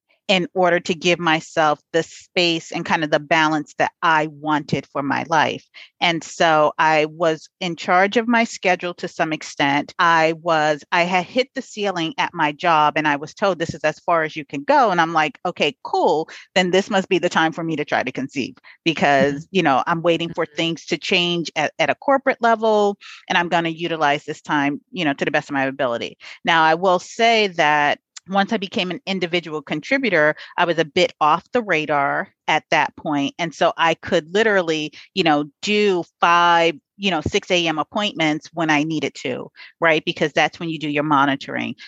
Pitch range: 155-190 Hz